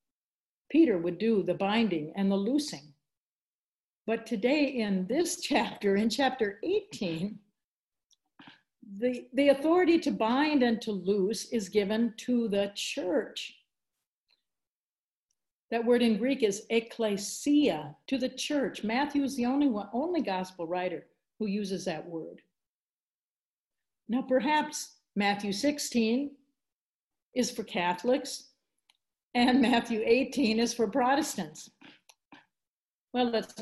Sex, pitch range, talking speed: female, 190-250 Hz, 110 wpm